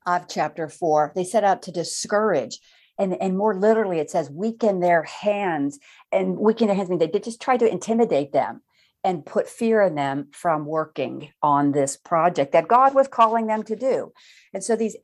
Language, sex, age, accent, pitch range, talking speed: English, female, 50-69, American, 175-230 Hz, 200 wpm